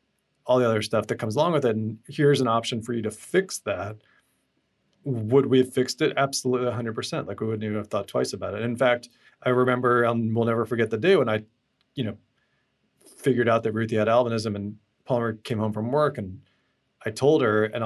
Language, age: English, 40-59